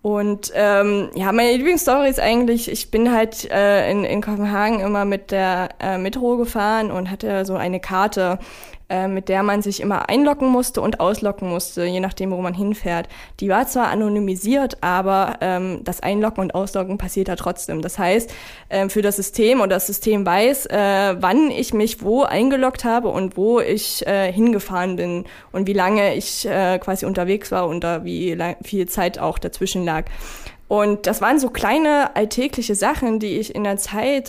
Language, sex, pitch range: German, female, 190-220 Hz